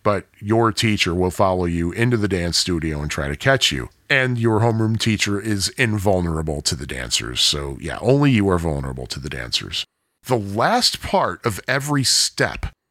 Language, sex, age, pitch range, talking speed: English, male, 40-59, 90-130 Hz, 180 wpm